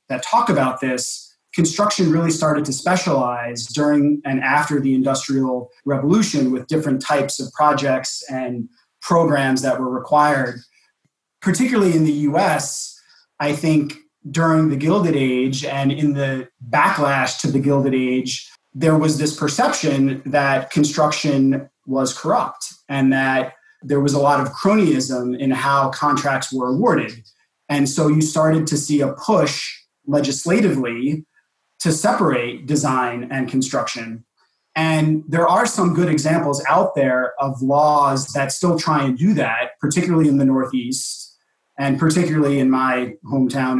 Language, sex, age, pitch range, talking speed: English, male, 30-49, 130-155 Hz, 140 wpm